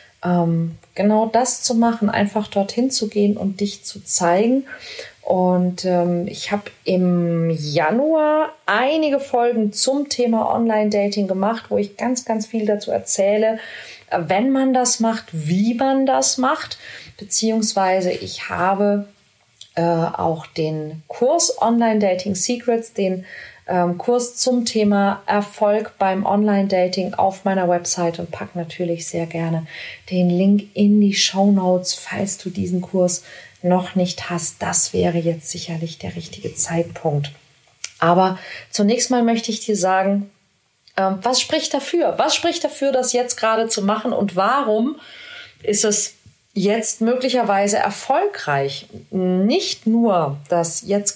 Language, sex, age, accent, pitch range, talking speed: German, female, 30-49, German, 180-230 Hz, 135 wpm